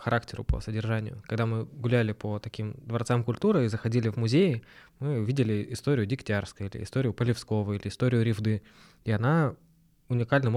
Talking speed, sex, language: 155 wpm, male, Russian